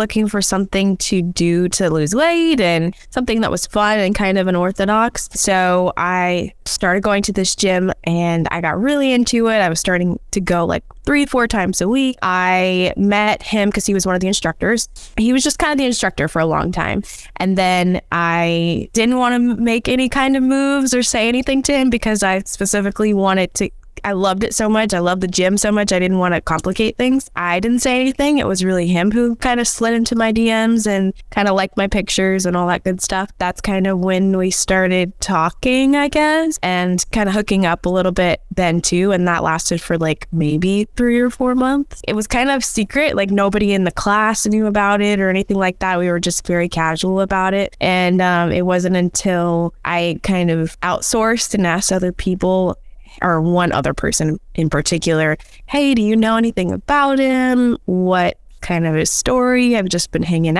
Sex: female